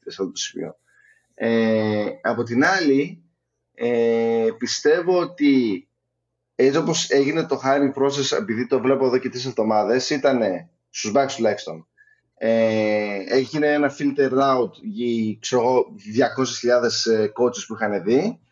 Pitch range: 120-155 Hz